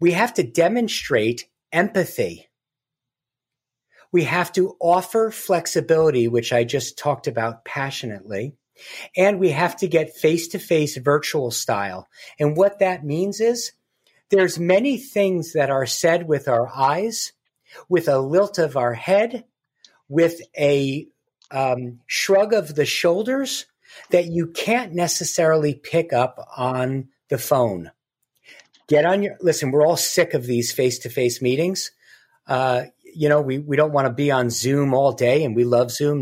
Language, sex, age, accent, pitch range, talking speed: English, male, 50-69, American, 135-185 Hz, 145 wpm